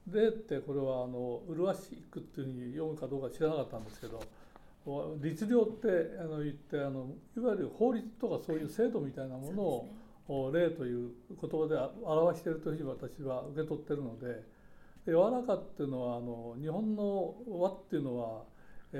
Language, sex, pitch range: Japanese, male, 135-200 Hz